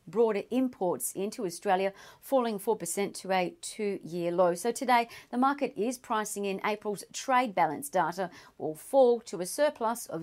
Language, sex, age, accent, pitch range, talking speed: English, female, 40-59, Australian, 185-235 Hz, 160 wpm